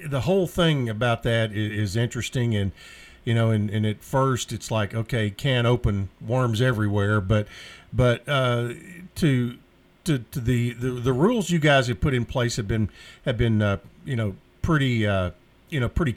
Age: 50-69